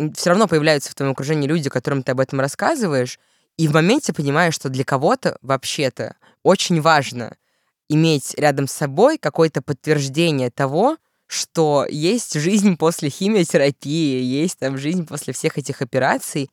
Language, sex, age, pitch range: Russian, female, 20-39, 135-160 Hz